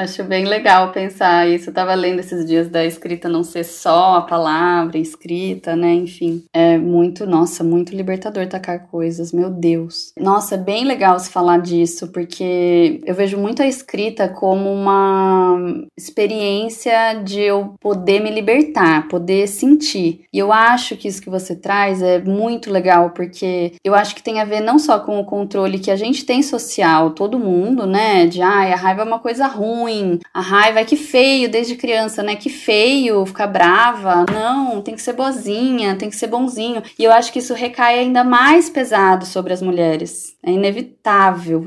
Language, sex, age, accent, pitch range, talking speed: Portuguese, female, 20-39, Brazilian, 185-230 Hz, 180 wpm